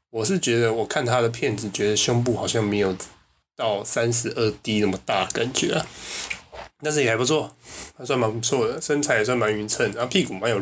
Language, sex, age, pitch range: Chinese, male, 20-39, 105-125 Hz